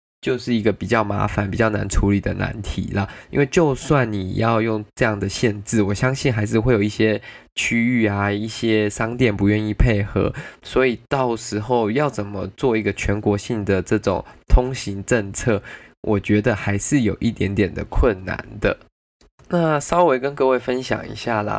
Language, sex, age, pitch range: Chinese, male, 20-39, 100-120 Hz